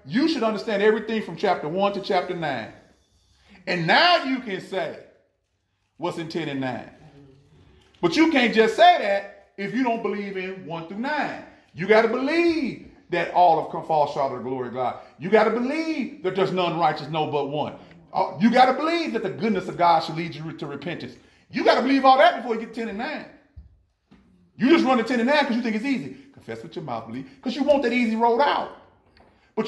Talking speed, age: 225 wpm, 40-59